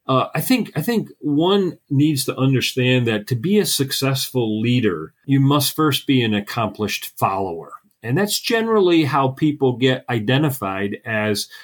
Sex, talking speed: male, 155 wpm